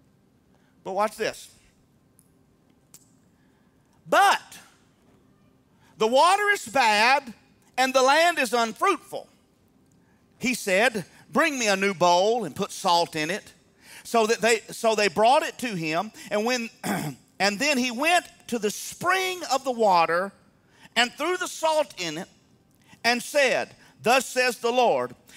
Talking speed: 130 wpm